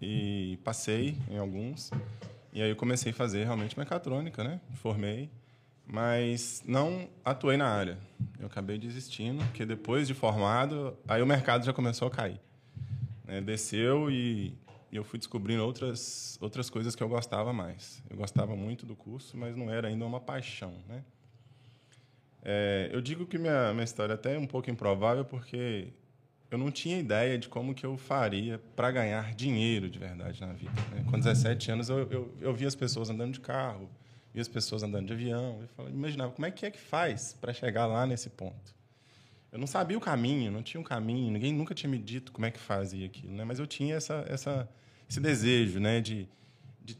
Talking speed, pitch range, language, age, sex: 190 wpm, 110-135 Hz, Portuguese, 20-39, male